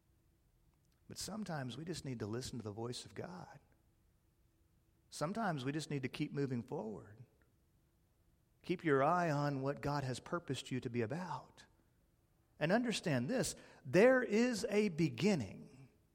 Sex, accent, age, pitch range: male, American, 40-59, 125-195 Hz